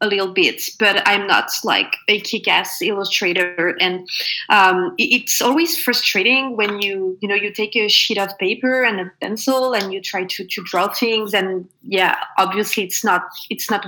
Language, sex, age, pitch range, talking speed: English, female, 20-39, 200-250 Hz, 180 wpm